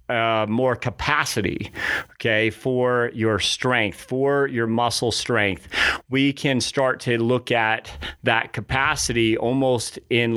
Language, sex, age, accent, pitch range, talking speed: English, male, 40-59, American, 105-125 Hz, 120 wpm